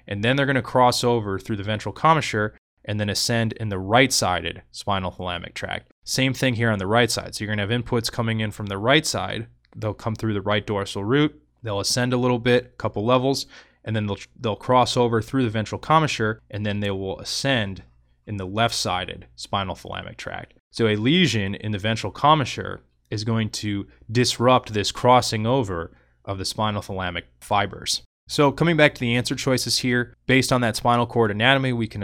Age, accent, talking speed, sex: 20-39, American, 210 wpm, male